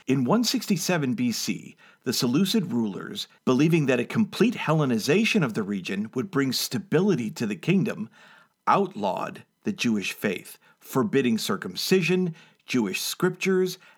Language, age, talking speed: English, 50-69, 120 wpm